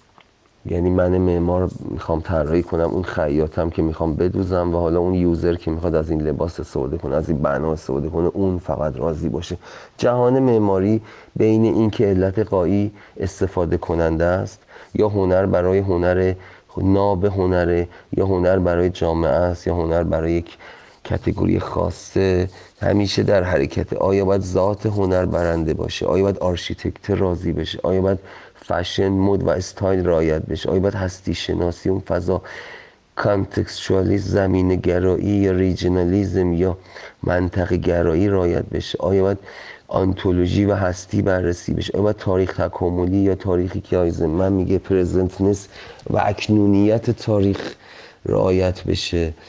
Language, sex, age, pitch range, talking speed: Persian, male, 30-49, 85-100 Hz, 140 wpm